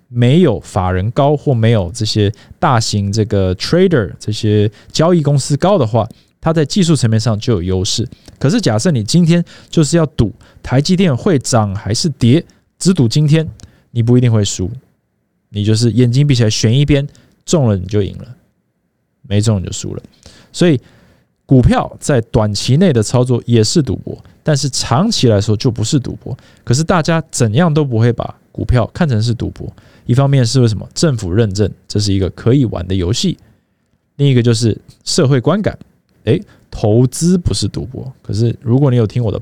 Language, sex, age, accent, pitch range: Chinese, male, 20-39, native, 105-140 Hz